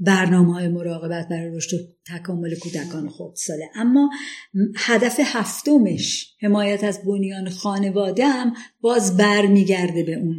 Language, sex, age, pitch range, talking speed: Persian, female, 50-69, 175-215 Hz, 120 wpm